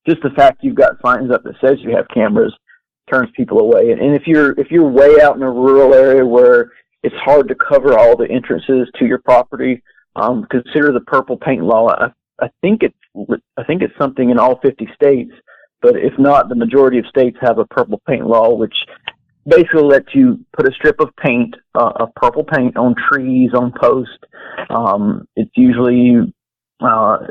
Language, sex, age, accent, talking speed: English, male, 40-59, American, 200 wpm